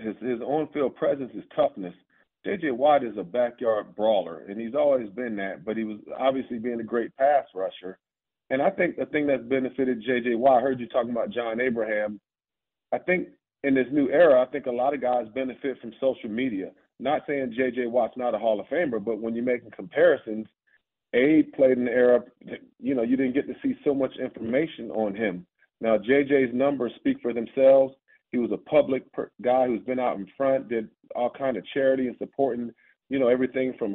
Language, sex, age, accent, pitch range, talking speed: English, male, 40-59, American, 115-135 Hz, 205 wpm